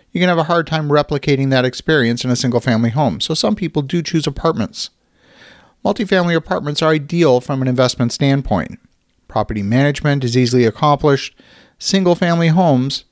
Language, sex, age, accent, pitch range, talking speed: English, male, 40-59, American, 130-160 Hz, 155 wpm